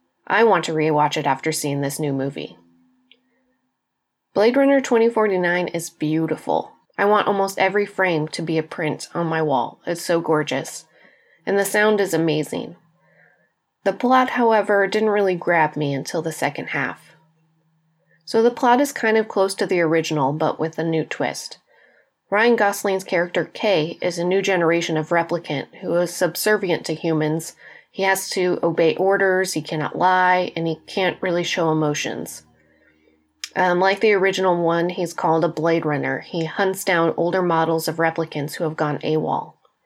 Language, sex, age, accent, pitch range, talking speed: English, female, 30-49, American, 155-195 Hz, 165 wpm